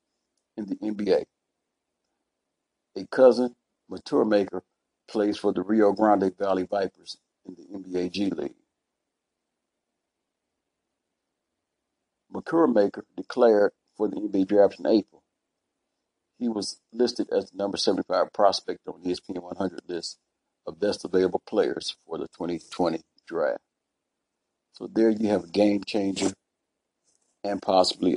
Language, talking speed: English, 125 wpm